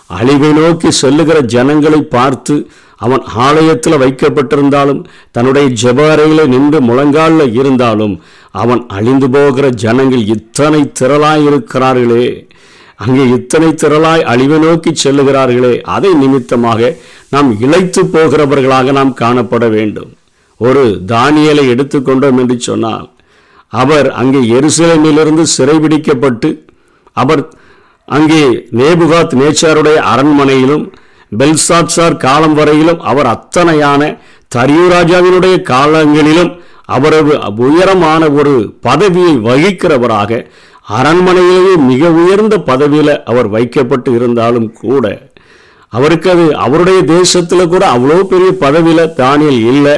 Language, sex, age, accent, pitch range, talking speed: Tamil, male, 50-69, native, 130-160 Hz, 95 wpm